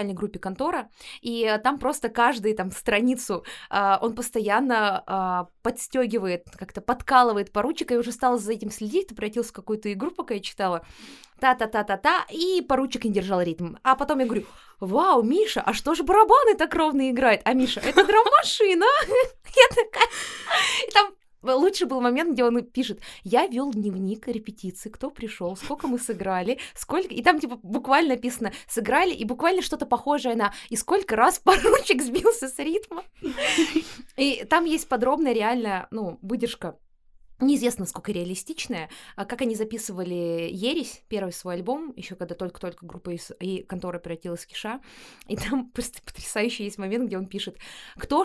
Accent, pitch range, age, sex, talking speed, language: native, 195-270 Hz, 20-39, female, 155 wpm, Russian